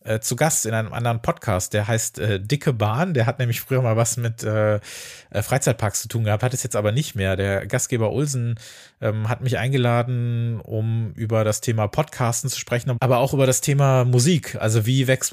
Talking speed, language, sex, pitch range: 205 wpm, German, male, 110-130 Hz